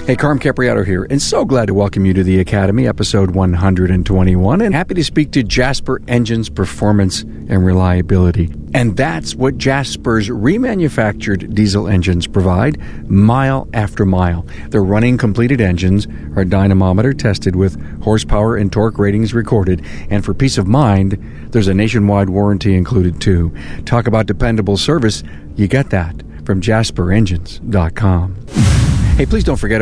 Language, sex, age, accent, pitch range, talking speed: English, male, 50-69, American, 95-120 Hz, 145 wpm